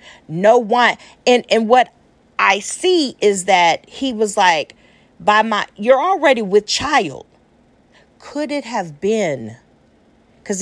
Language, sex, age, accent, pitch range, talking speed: English, female, 40-59, American, 205-280 Hz, 130 wpm